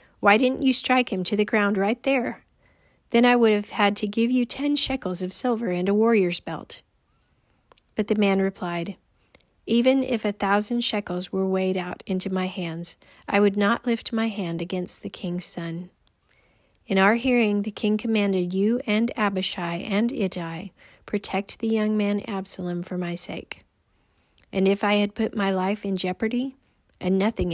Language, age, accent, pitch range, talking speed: English, 40-59, American, 180-220 Hz, 175 wpm